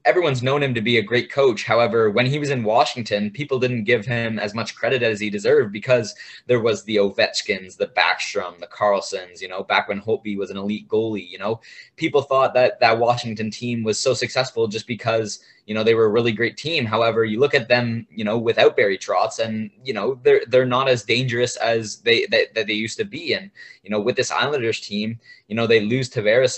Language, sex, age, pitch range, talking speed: English, male, 20-39, 110-130 Hz, 230 wpm